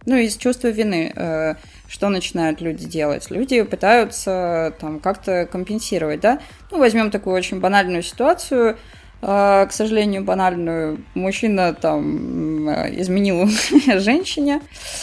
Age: 20-39